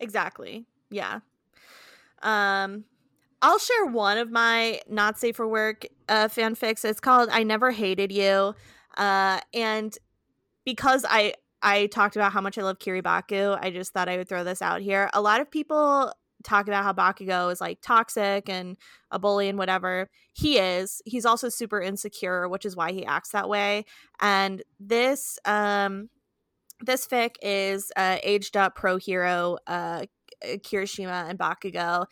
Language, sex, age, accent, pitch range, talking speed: English, female, 20-39, American, 185-215 Hz, 160 wpm